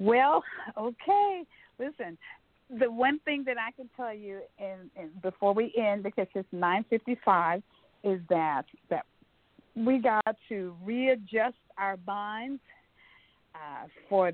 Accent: American